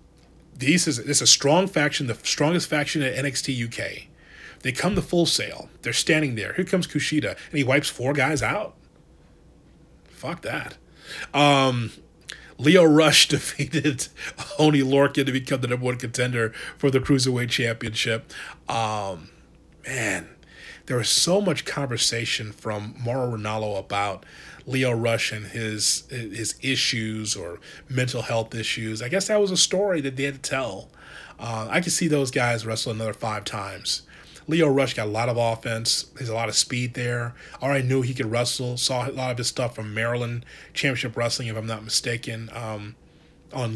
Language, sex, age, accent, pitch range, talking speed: English, male, 30-49, American, 115-145 Hz, 170 wpm